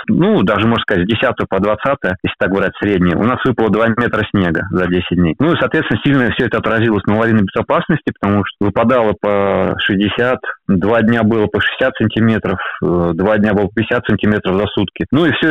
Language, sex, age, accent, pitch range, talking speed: Russian, male, 20-39, native, 100-125 Hz, 200 wpm